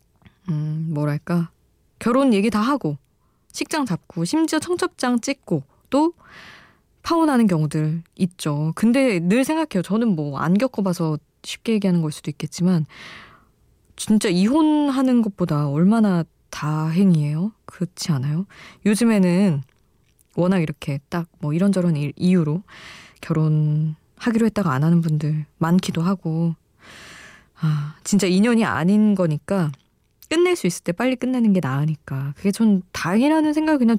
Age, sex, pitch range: 20-39, female, 155-220 Hz